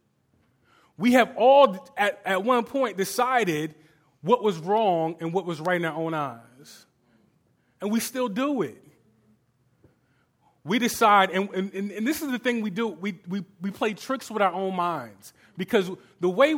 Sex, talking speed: male, 170 wpm